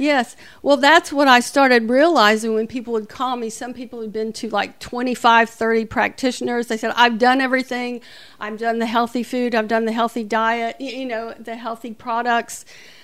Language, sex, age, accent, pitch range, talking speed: English, female, 50-69, American, 215-240 Hz, 190 wpm